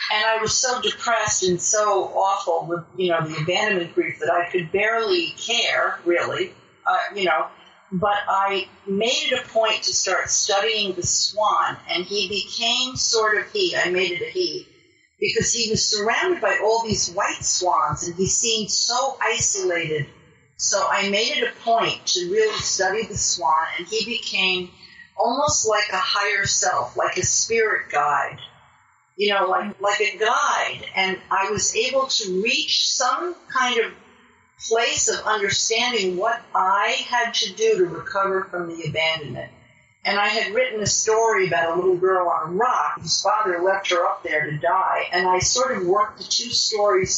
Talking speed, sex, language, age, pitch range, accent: 175 wpm, female, English, 50-69, 180-235 Hz, American